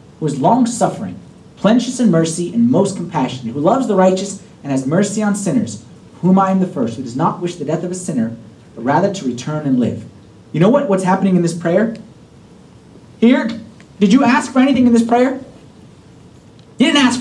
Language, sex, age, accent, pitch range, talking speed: English, male, 30-49, American, 190-250 Hz, 200 wpm